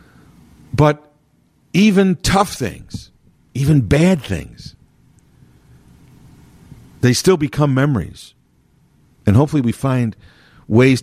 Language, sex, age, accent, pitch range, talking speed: English, male, 50-69, American, 110-160 Hz, 85 wpm